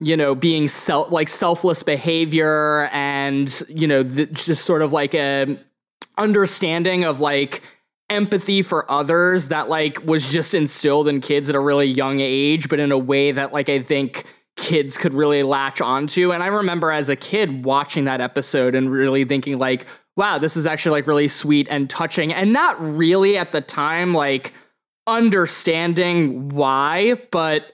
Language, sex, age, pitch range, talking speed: English, male, 20-39, 135-165 Hz, 170 wpm